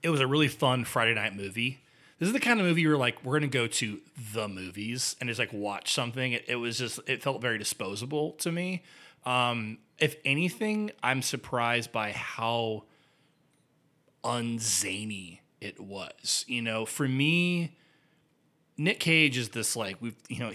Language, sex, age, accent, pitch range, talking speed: English, male, 30-49, American, 105-140 Hz, 180 wpm